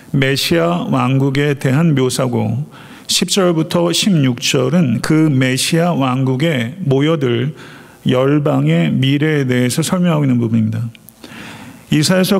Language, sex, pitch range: Korean, male, 135-170 Hz